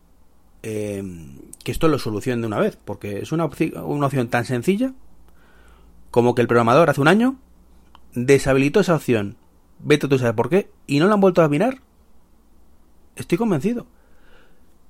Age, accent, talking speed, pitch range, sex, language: 30-49, Spanish, 160 wpm, 100-165 Hz, male, Spanish